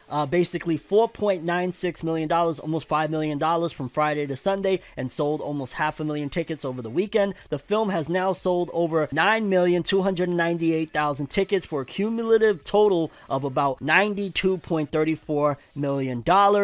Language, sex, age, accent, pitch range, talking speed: English, male, 20-39, American, 150-180 Hz, 135 wpm